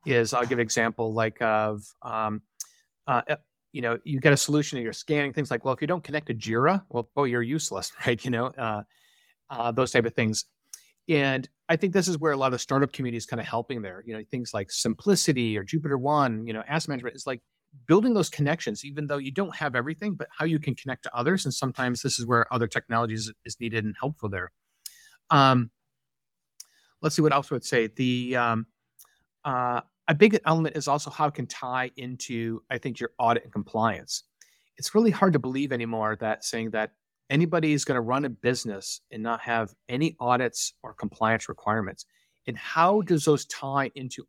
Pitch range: 115-145 Hz